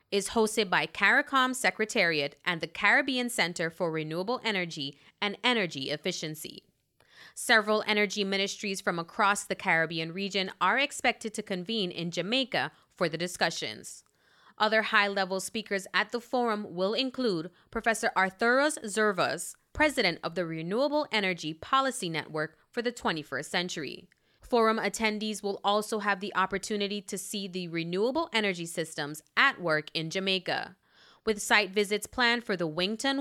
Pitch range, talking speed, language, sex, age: 175-230 Hz, 140 wpm, English, female, 20-39